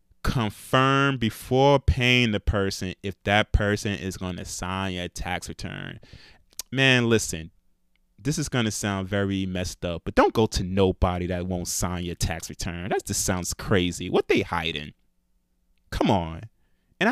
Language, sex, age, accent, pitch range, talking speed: English, male, 20-39, American, 85-135 Hz, 165 wpm